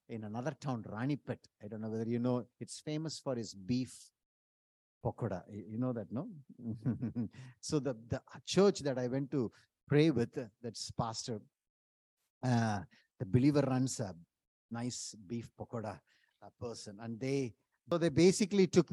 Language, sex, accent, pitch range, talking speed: English, male, Indian, 110-140 Hz, 155 wpm